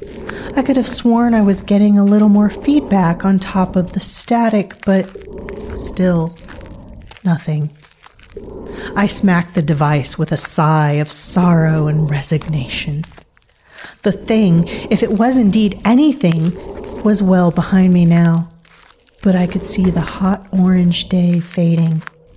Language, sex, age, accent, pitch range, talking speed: English, female, 40-59, American, 165-205 Hz, 135 wpm